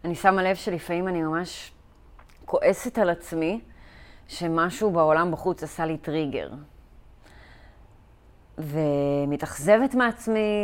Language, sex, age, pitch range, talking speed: Hebrew, female, 30-49, 145-195 Hz, 95 wpm